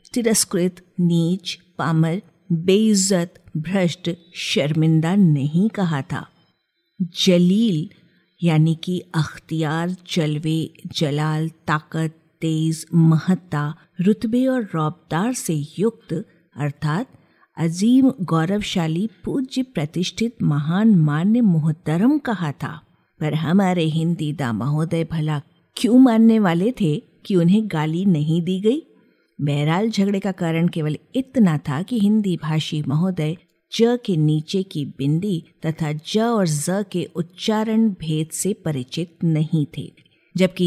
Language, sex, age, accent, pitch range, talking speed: Hindi, female, 50-69, native, 160-200 Hz, 110 wpm